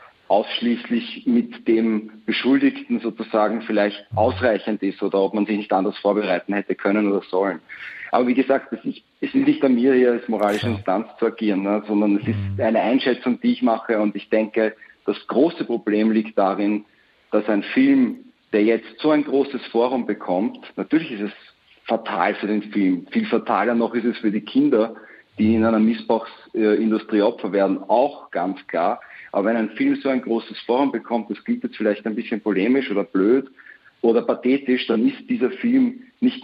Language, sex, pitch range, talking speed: German, male, 105-130 Hz, 180 wpm